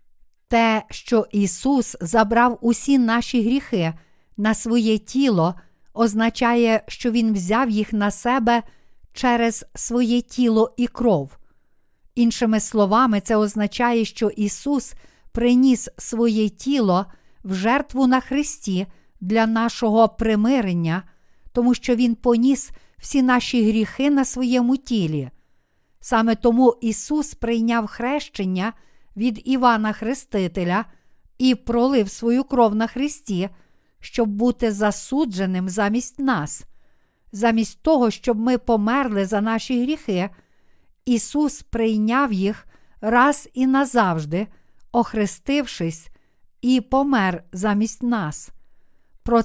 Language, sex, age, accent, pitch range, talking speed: Ukrainian, female, 50-69, native, 210-250 Hz, 105 wpm